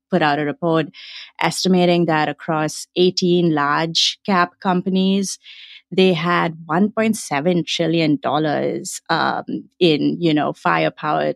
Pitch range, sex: 160-190 Hz, female